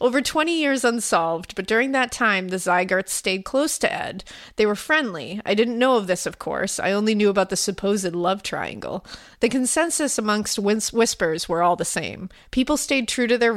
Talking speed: 200 wpm